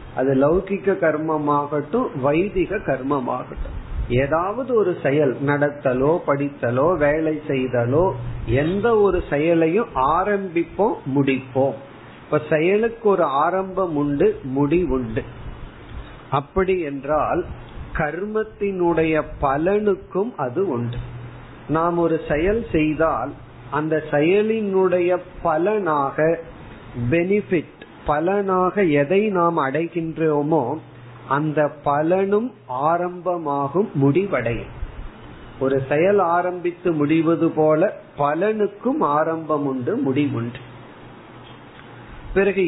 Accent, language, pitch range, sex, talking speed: native, Tamil, 140-185 Hz, male, 75 wpm